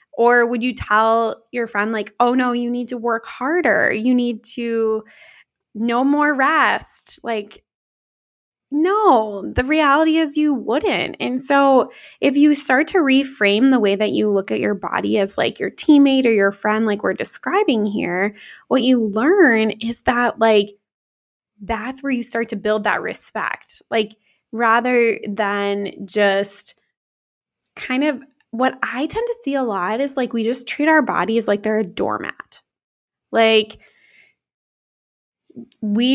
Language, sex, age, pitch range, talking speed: English, female, 20-39, 220-275 Hz, 155 wpm